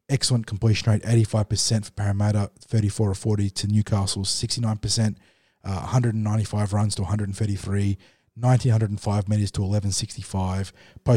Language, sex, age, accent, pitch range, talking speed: English, male, 20-39, Australian, 100-115 Hz, 105 wpm